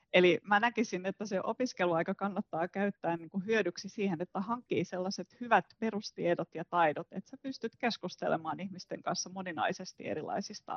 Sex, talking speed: female, 140 wpm